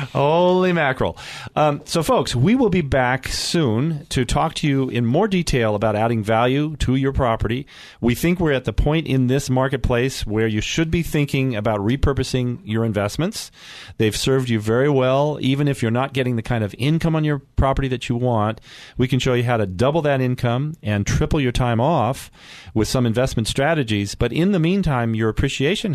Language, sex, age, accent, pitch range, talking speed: English, male, 40-59, American, 115-145 Hz, 195 wpm